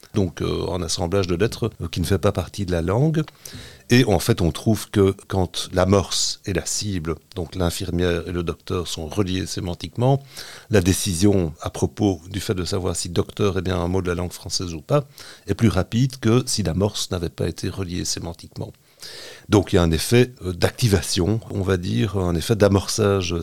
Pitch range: 90-110 Hz